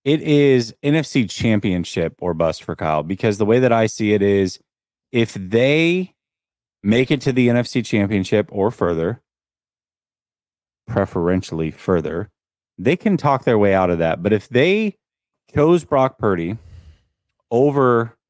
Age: 30-49